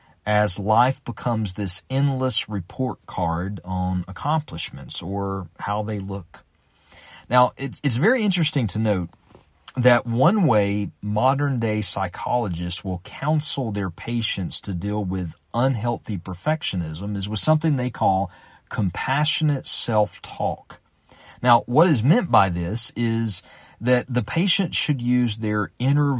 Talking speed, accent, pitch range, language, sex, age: 125 wpm, American, 95-130 Hz, English, male, 40-59